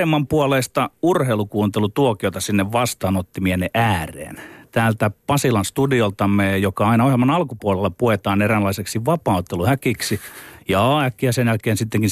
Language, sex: Finnish, male